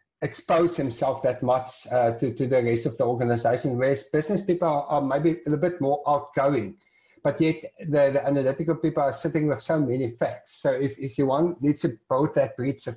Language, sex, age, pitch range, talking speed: English, male, 60-79, 130-160 Hz, 210 wpm